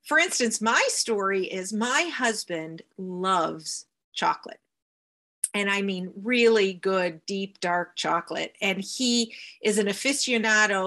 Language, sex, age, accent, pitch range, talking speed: English, female, 40-59, American, 195-235 Hz, 120 wpm